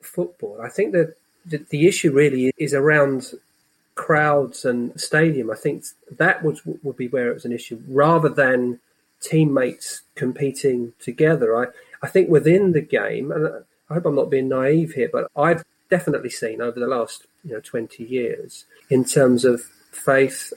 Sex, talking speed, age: male, 170 wpm, 30-49